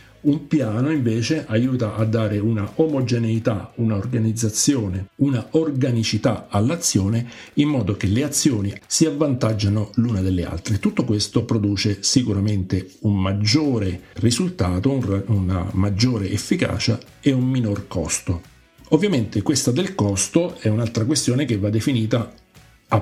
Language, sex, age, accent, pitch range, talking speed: Italian, male, 50-69, native, 100-130 Hz, 125 wpm